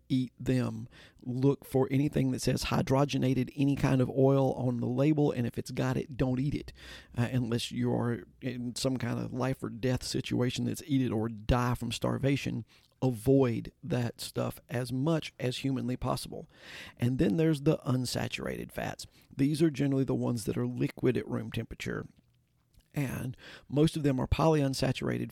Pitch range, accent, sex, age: 120-145 Hz, American, male, 40-59